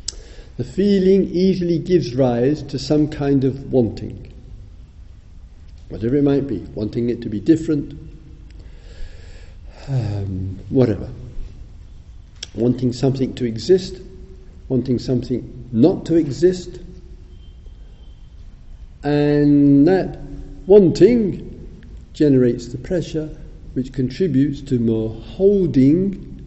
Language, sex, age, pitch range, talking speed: English, male, 50-69, 100-155 Hz, 95 wpm